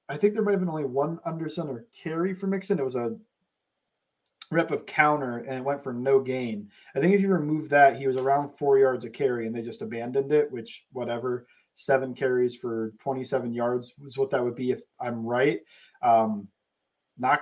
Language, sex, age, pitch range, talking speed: English, male, 20-39, 120-165 Hz, 205 wpm